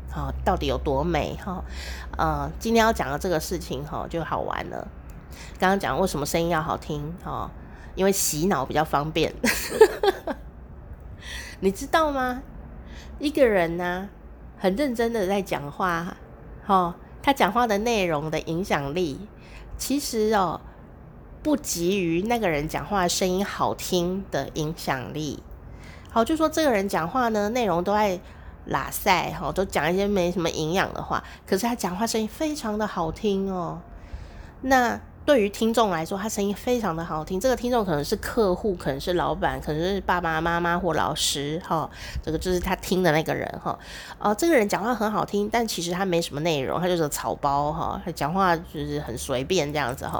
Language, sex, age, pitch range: Chinese, female, 30-49, 160-225 Hz